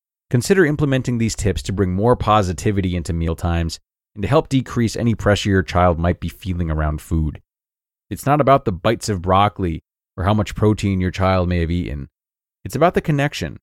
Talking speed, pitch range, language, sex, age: 190 wpm, 90-125 Hz, English, male, 30-49